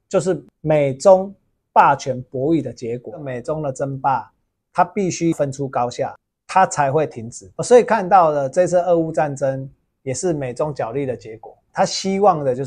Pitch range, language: 130-170 Hz, Chinese